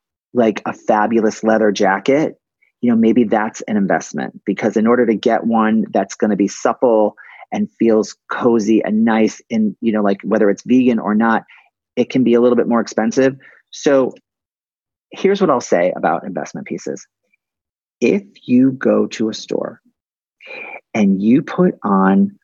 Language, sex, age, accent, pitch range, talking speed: English, male, 40-59, American, 105-140 Hz, 165 wpm